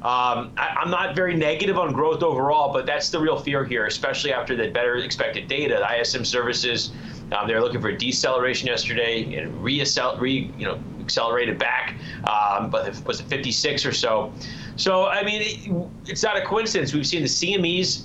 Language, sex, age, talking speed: English, male, 30-49, 195 wpm